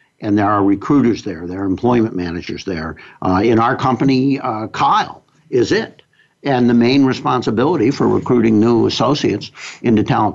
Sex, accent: male, American